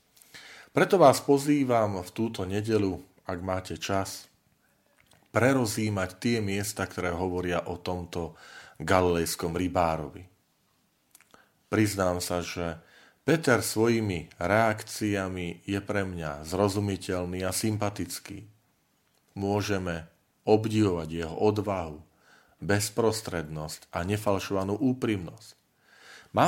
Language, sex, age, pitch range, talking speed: Slovak, male, 40-59, 90-110 Hz, 90 wpm